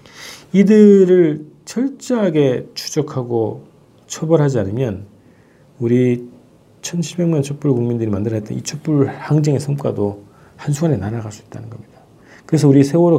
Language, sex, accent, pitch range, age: Korean, male, native, 115-150 Hz, 40-59